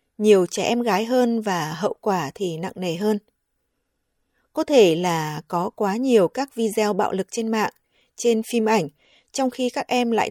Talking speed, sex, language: 185 wpm, female, Vietnamese